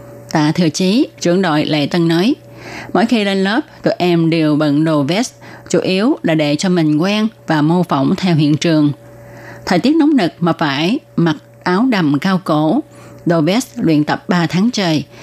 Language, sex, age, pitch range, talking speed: Vietnamese, female, 20-39, 150-195 Hz, 195 wpm